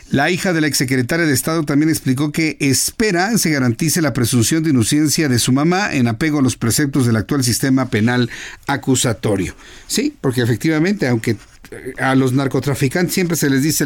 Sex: male